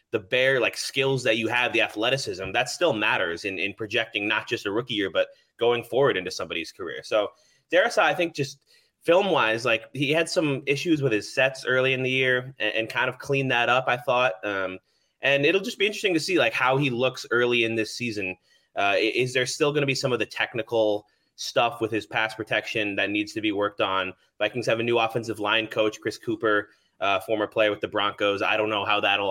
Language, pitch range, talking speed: English, 110-130 Hz, 230 wpm